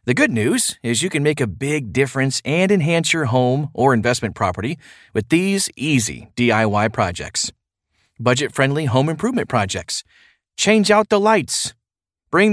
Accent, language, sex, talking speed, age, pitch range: American, English, male, 150 wpm, 40-59, 115-165 Hz